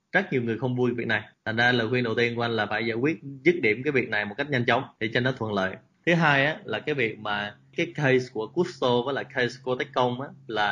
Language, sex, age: Vietnamese, male, 20-39